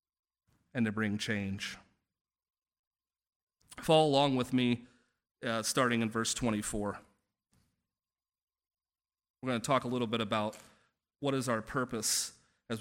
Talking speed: 120 wpm